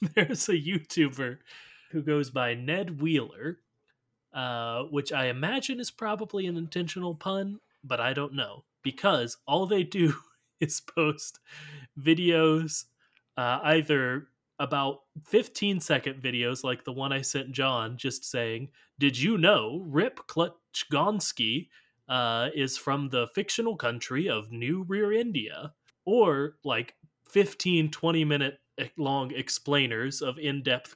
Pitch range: 125-160 Hz